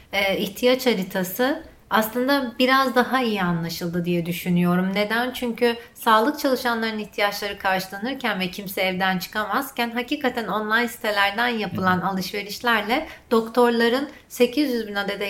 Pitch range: 195-250 Hz